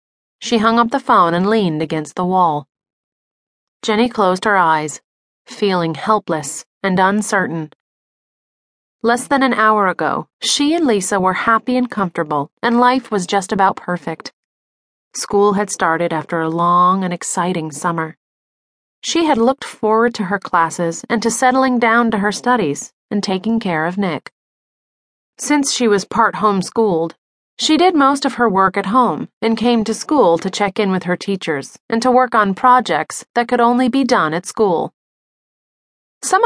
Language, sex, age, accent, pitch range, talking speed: English, female, 30-49, American, 175-235 Hz, 165 wpm